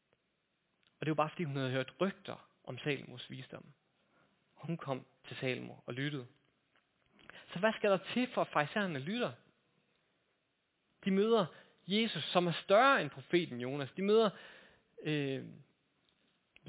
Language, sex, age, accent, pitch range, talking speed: Danish, male, 30-49, native, 140-195 Hz, 140 wpm